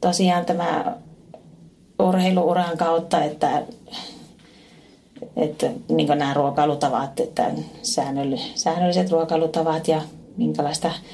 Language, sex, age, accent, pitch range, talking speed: Finnish, female, 30-49, native, 145-185 Hz, 75 wpm